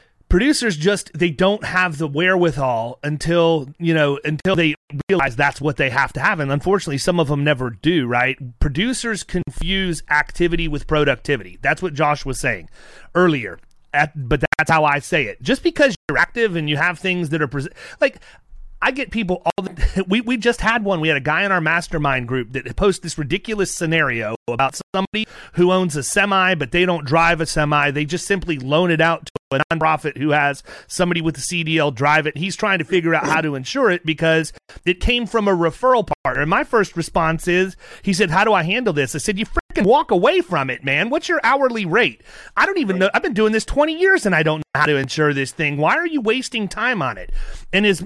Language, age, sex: English, 30-49, male